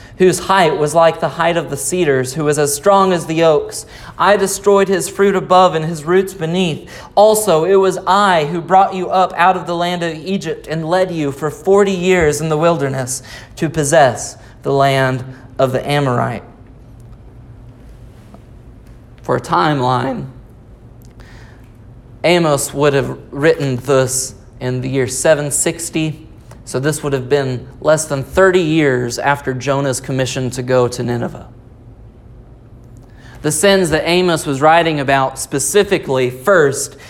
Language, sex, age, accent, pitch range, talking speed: English, male, 30-49, American, 130-185 Hz, 150 wpm